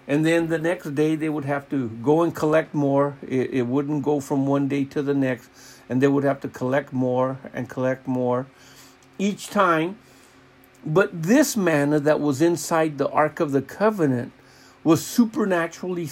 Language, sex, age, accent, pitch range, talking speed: English, male, 60-79, American, 130-160 Hz, 180 wpm